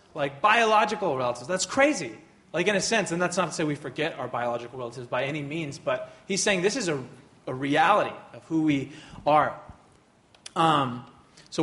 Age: 30-49